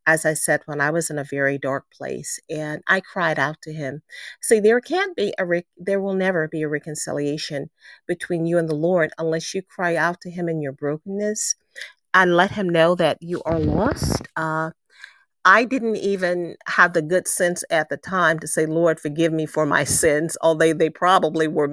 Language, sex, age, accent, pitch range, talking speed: English, female, 40-59, American, 155-180 Hz, 205 wpm